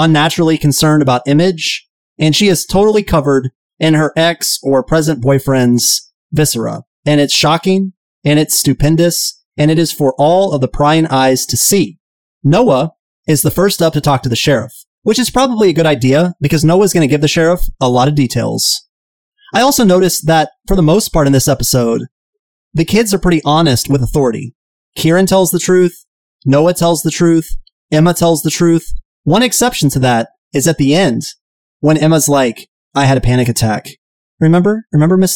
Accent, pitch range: American, 135-175 Hz